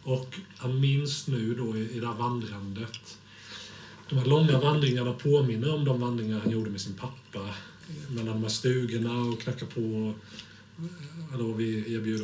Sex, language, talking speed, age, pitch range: male, Swedish, 160 wpm, 40-59, 105-130 Hz